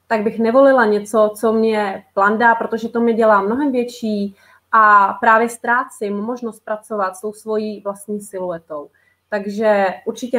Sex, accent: female, native